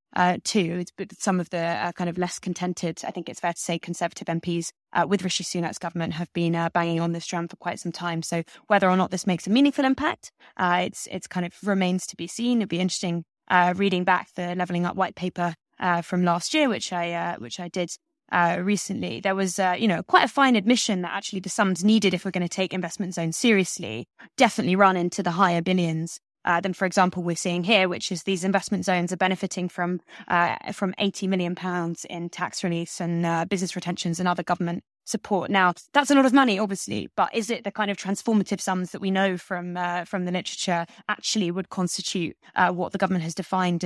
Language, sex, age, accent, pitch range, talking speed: English, female, 20-39, British, 175-195 Hz, 230 wpm